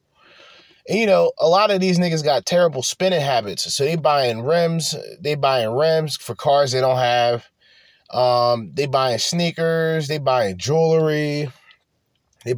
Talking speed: 150 wpm